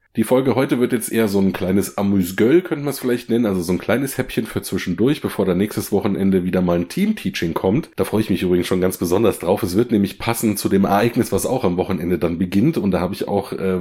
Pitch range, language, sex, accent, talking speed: 95-115 Hz, German, male, German, 255 wpm